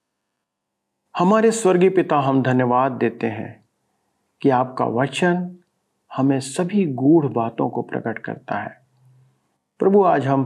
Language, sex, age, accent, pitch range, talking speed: Hindi, male, 50-69, native, 130-165 Hz, 120 wpm